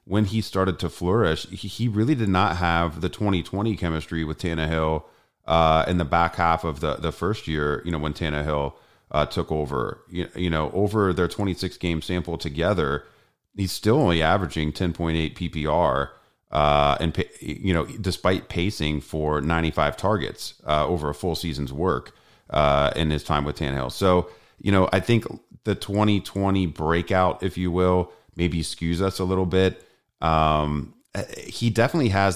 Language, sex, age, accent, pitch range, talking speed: English, male, 30-49, American, 75-90 Hz, 165 wpm